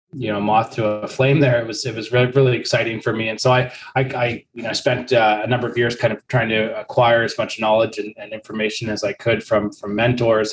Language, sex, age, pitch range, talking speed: English, male, 20-39, 110-130 Hz, 260 wpm